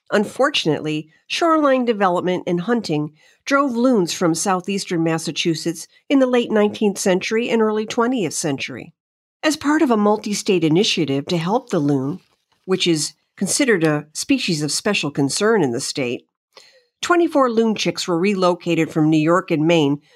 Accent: American